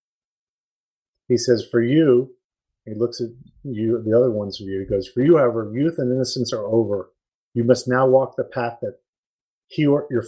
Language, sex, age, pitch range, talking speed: English, male, 30-49, 110-145 Hz, 195 wpm